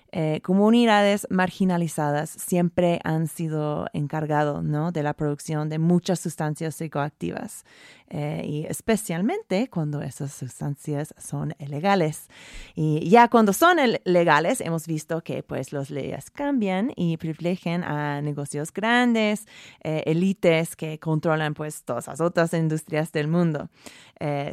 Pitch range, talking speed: 150-180 Hz, 130 wpm